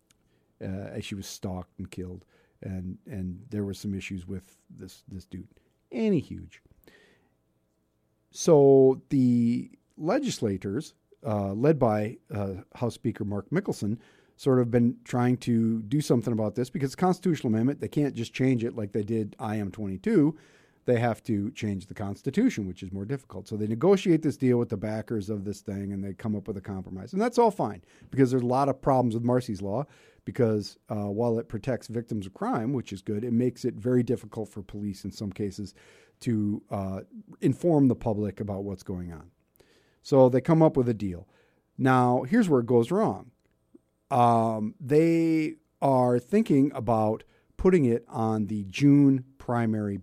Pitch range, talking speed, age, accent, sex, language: 100-130 Hz, 180 wpm, 40-59, American, male, English